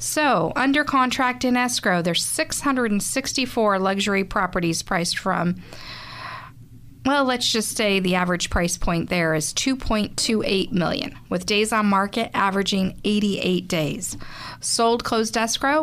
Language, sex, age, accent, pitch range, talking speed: English, female, 40-59, American, 175-230 Hz, 125 wpm